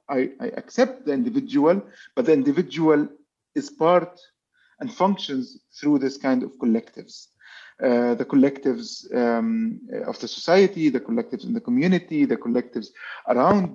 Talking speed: 140 wpm